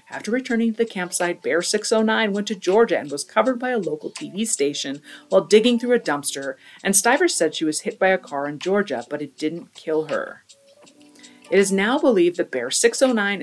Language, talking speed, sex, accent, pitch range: English, 205 wpm, female, American, 145-225 Hz